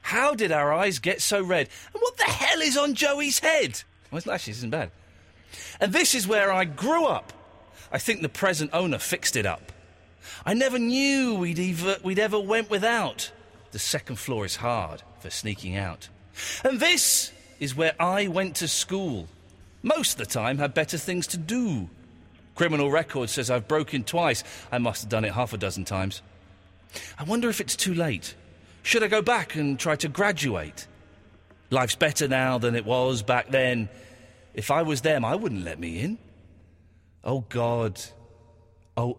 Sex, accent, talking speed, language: male, British, 180 wpm, English